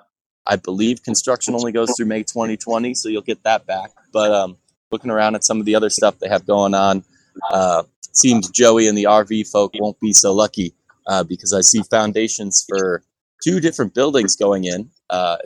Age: 20-39